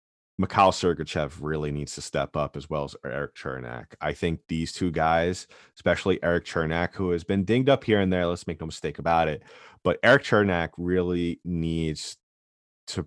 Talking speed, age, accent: 185 wpm, 30-49, American